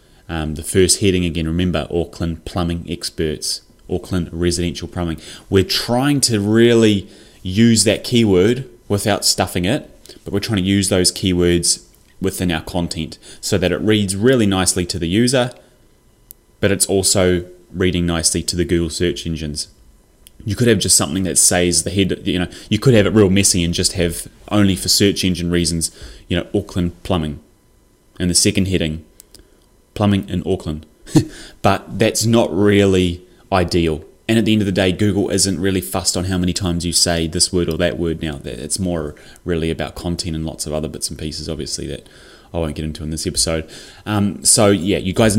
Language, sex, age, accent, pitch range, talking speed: English, male, 20-39, Australian, 85-100 Hz, 185 wpm